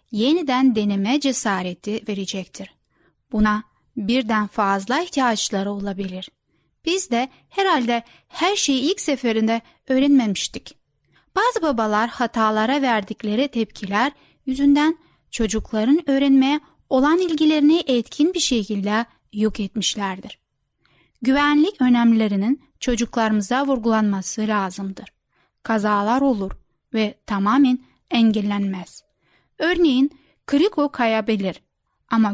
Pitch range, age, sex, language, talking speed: 215-275 Hz, 10-29, female, Turkish, 85 wpm